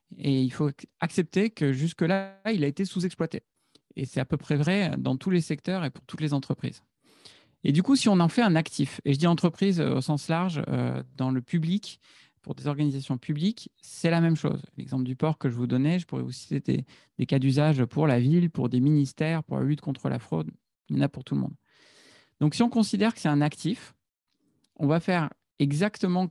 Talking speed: 225 wpm